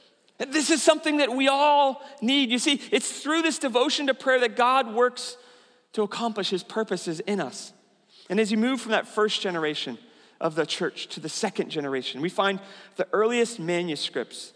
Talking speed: 180 wpm